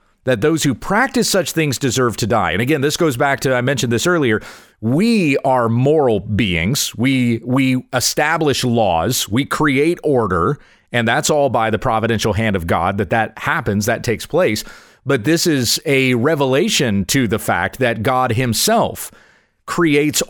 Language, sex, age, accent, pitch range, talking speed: English, male, 40-59, American, 115-165 Hz, 170 wpm